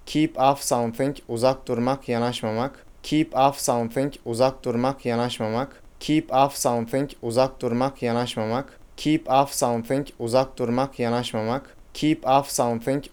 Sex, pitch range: male, 120-135 Hz